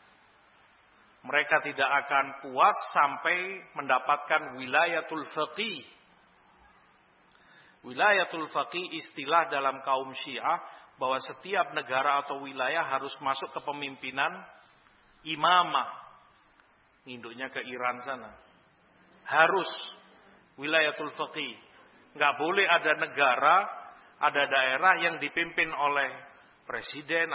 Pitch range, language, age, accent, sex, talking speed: 125-155 Hz, Indonesian, 50-69, native, male, 90 wpm